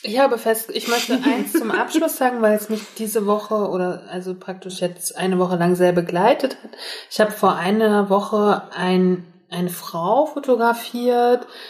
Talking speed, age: 170 wpm, 30-49